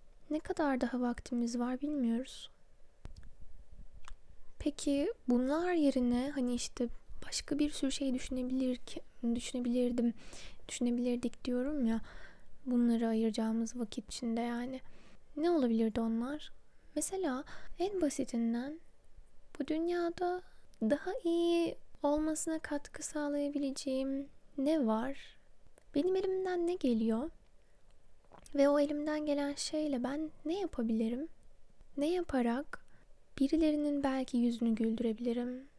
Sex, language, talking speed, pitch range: female, Turkish, 100 wpm, 235-290 Hz